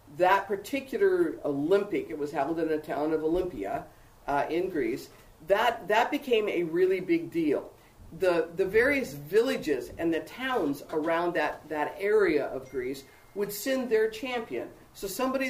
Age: 50-69